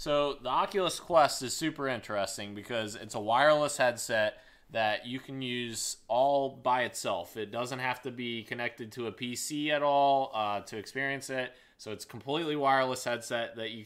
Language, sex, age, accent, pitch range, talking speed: English, male, 20-39, American, 110-135 Hz, 180 wpm